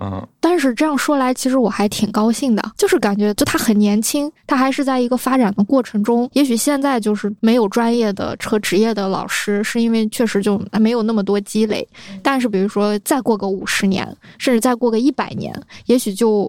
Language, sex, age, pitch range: Chinese, female, 20-39, 205-240 Hz